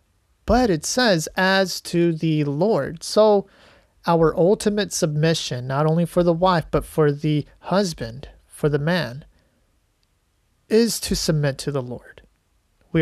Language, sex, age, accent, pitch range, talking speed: English, male, 30-49, American, 140-175 Hz, 140 wpm